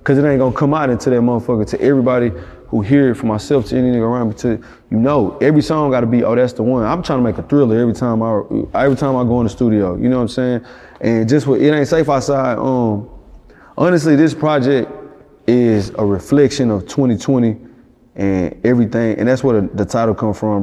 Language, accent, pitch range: English, American, 110-140 Hz